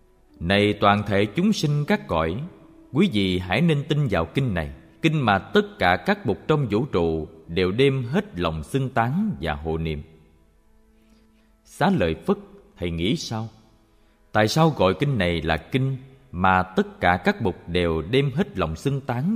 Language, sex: Vietnamese, male